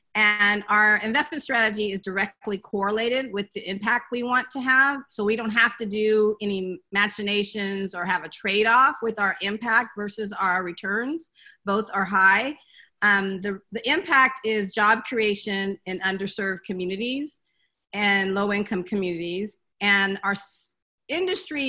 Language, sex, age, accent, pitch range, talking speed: English, female, 40-59, American, 195-250 Hz, 145 wpm